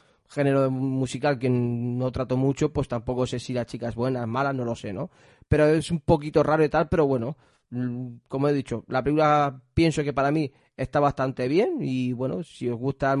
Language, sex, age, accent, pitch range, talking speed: Spanish, male, 30-49, Spanish, 125-150 Hz, 205 wpm